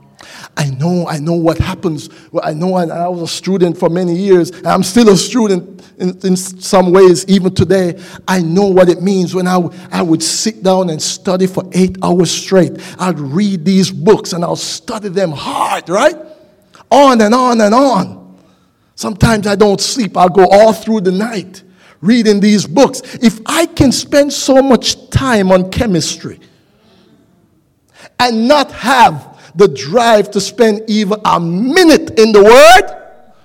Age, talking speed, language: 50-69, 170 wpm, English